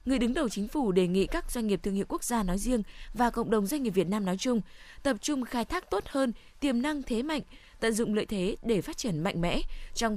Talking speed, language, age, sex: 265 wpm, Vietnamese, 10-29, female